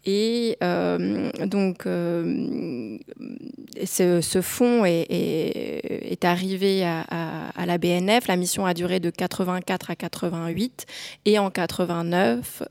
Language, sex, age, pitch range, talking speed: French, female, 20-39, 175-205 Hz, 120 wpm